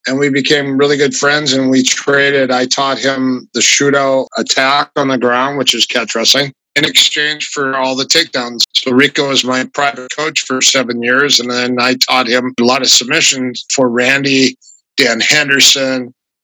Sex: male